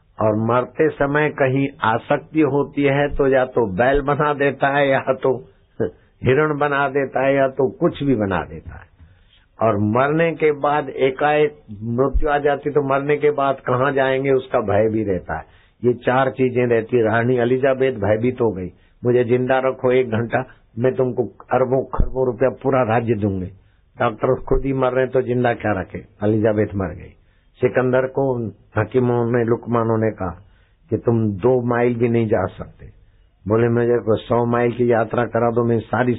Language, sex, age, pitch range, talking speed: Hindi, male, 60-79, 100-135 Hz, 175 wpm